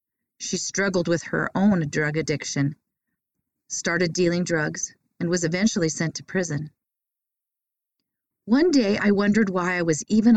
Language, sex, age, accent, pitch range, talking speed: English, female, 40-59, American, 160-215 Hz, 140 wpm